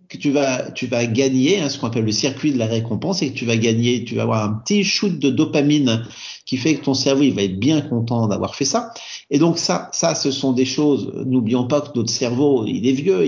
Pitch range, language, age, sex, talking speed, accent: 115-145 Hz, French, 50-69, male, 260 wpm, French